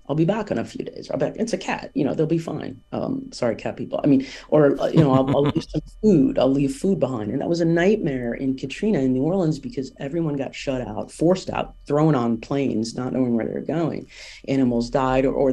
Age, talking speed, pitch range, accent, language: 40-59, 245 wpm, 125-155 Hz, American, English